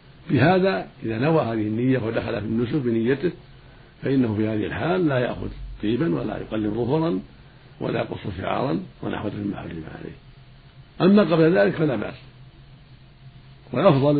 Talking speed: 140 wpm